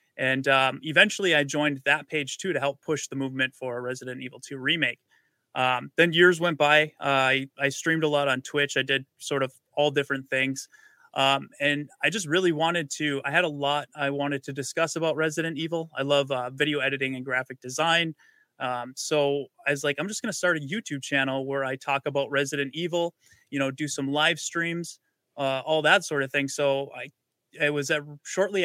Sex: male